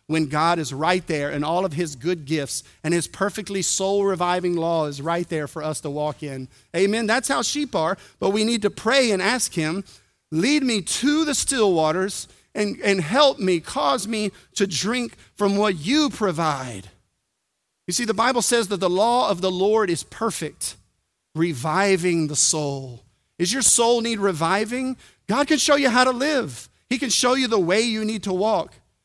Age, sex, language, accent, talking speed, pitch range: 40-59, male, English, American, 190 wpm, 155-215 Hz